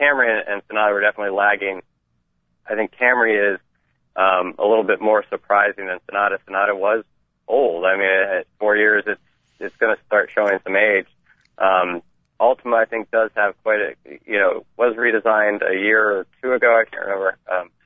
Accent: American